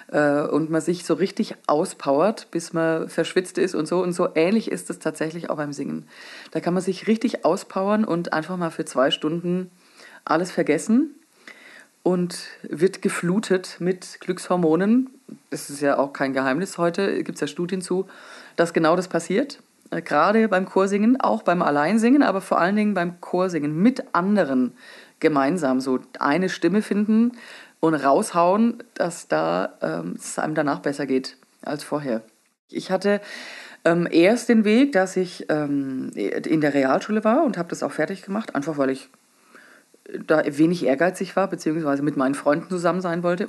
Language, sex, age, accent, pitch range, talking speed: German, female, 30-49, German, 155-205 Hz, 165 wpm